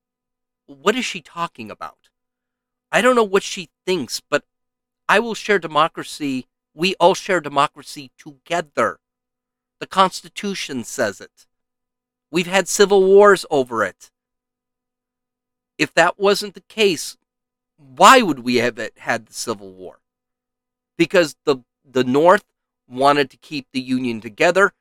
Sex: male